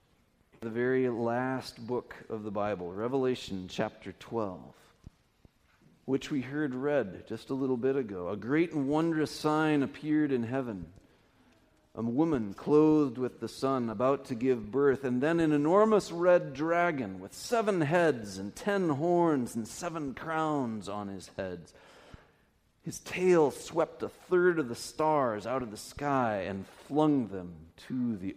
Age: 40-59